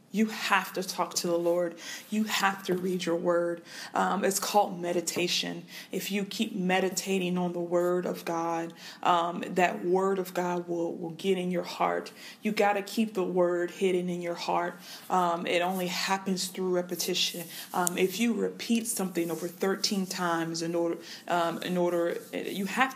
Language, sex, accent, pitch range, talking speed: English, female, American, 170-195 Hz, 180 wpm